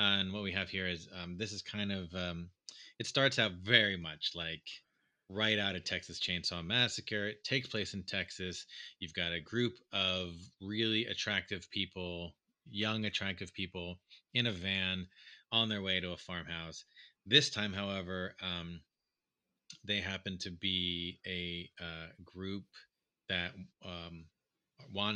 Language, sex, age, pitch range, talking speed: English, male, 30-49, 90-105 Hz, 150 wpm